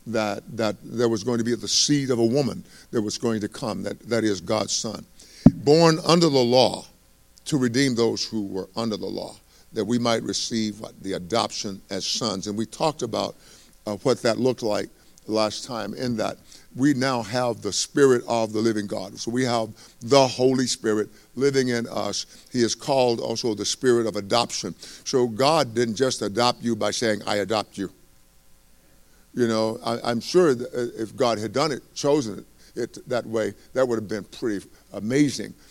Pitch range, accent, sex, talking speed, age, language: 110-135 Hz, American, male, 190 wpm, 50-69, English